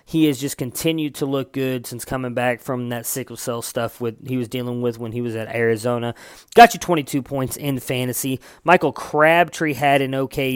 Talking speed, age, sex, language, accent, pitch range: 205 wpm, 20-39, male, English, American, 125-145 Hz